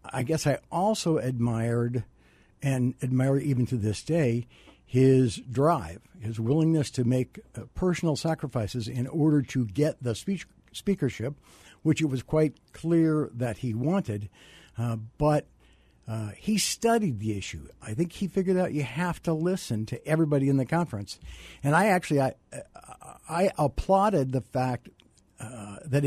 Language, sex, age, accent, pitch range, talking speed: English, male, 60-79, American, 120-165 Hz, 150 wpm